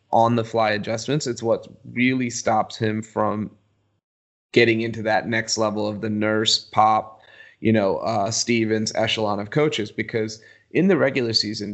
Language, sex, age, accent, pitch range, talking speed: English, male, 30-49, American, 110-120 Hz, 150 wpm